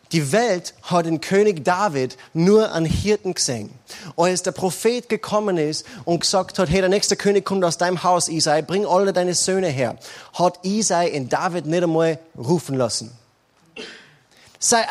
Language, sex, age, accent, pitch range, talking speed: German, male, 30-49, German, 145-200 Hz, 165 wpm